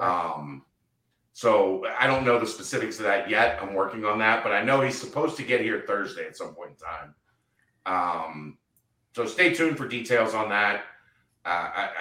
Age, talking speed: 40-59, 185 wpm